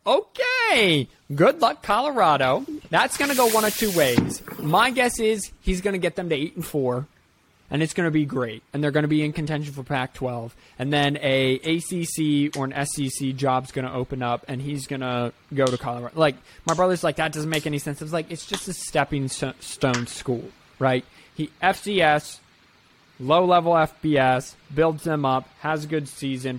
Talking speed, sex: 185 wpm, male